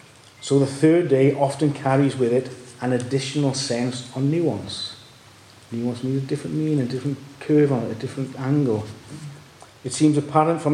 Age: 40-59